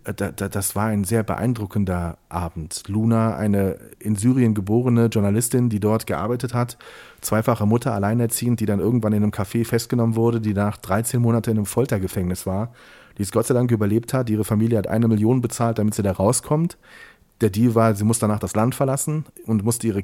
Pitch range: 105-125 Hz